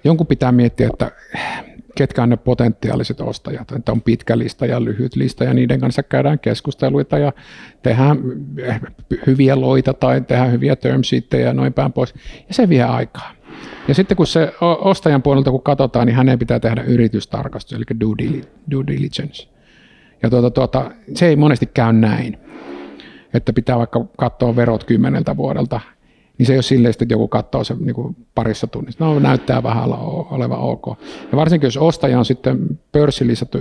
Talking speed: 160 wpm